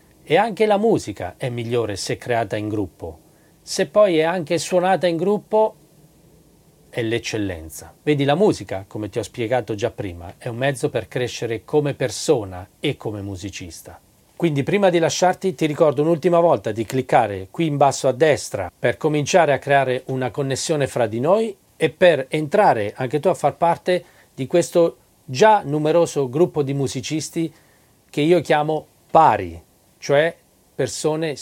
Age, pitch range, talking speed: 40-59, 115-160 Hz, 160 wpm